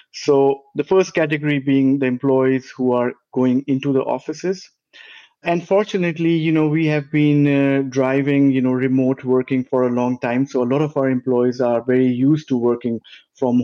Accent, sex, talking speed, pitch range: Indian, male, 185 wpm, 125-150 Hz